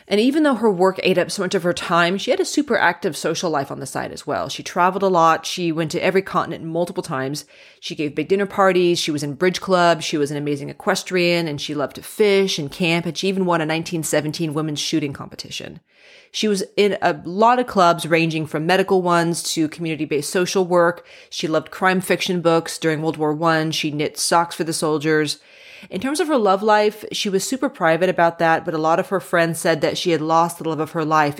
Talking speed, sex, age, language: 235 wpm, female, 30-49, English